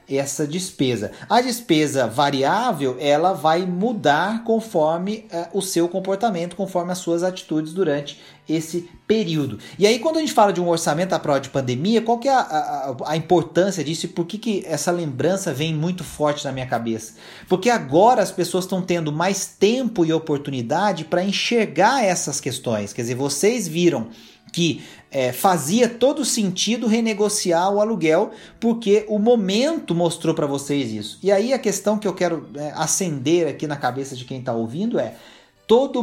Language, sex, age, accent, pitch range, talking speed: Portuguese, male, 40-59, Brazilian, 150-205 Hz, 175 wpm